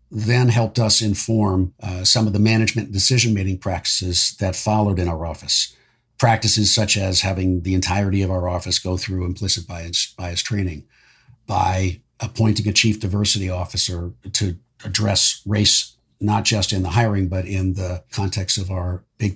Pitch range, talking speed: 95-110 Hz, 160 wpm